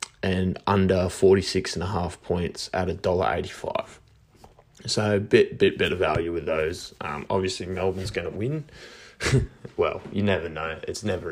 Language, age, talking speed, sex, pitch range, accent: English, 20-39, 140 wpm, male, 95-105 Hz, Australian